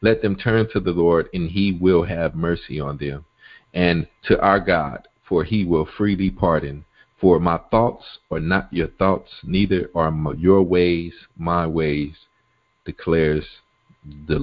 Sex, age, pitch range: male, 50-69, 85-125 Hz